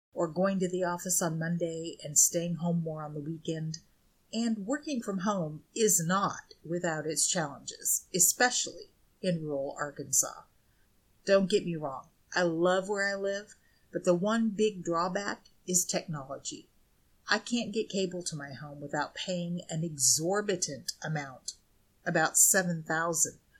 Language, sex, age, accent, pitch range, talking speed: English, female, 40-59, American, 160-195 Hz, 145 wpm